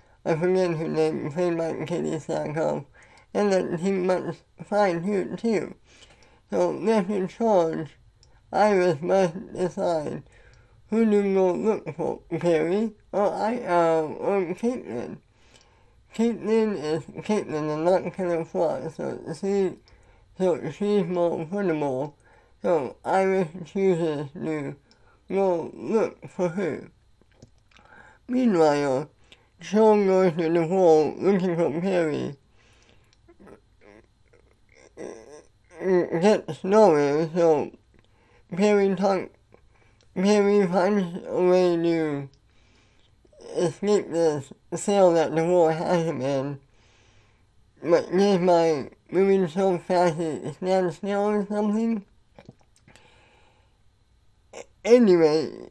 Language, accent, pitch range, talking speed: English, American, 160-195 Hz, 105 wpm